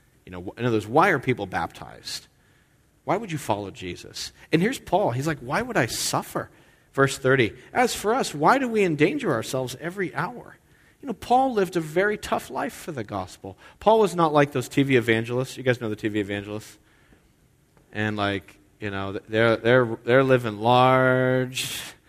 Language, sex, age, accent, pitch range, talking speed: English, male, 40-59, American, 110-145 Hz, 185 wpm